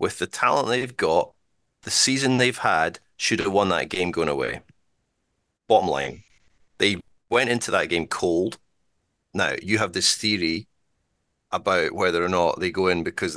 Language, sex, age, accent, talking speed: English, male, 30-49, British, 165 wpm